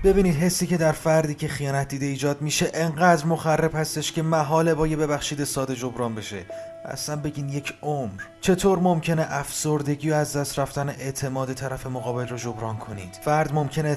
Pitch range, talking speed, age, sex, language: 125-150 Hz, 170 wpm, 30-49, male, Persian